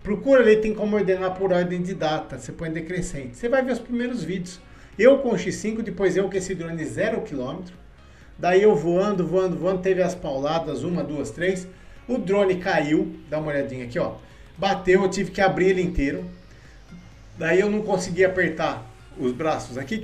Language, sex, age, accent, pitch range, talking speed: Portuguese, male, 50-69, Brazilian, 155-190 Hz, 190 wpm